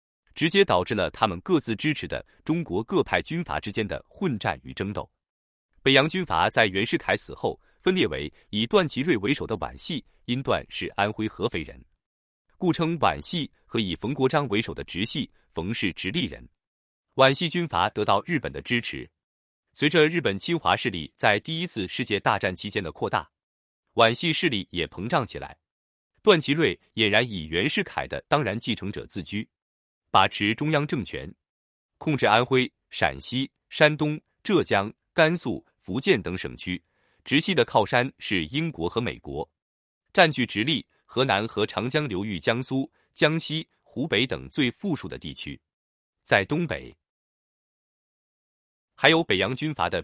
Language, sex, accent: Chinese, male, native